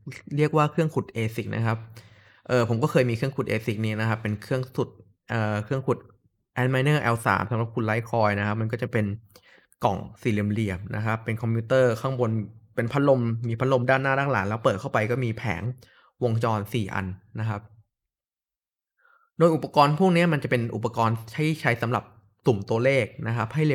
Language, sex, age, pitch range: Thai, male, 20-39, 110-135 Hz